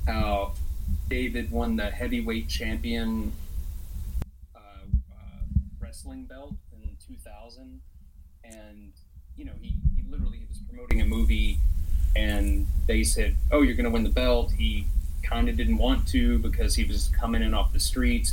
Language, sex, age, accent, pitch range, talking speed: English, male, 30-49, American, 70-95 Hz, 155 wpm